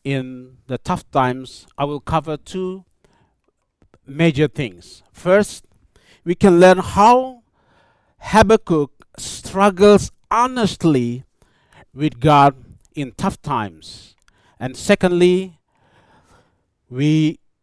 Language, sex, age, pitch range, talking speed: English, male, 50-69, 125-185 Hz, 90 wpm